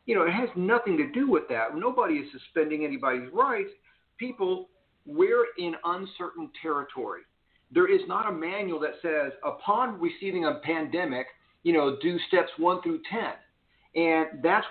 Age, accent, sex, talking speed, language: 50-69, American, male, 160 wpm, English